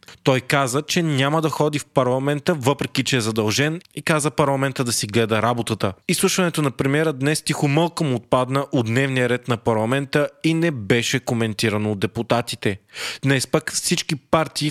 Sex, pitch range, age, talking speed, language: male, 125-155 Hz, 20-39, 165 wpm, Bulgarian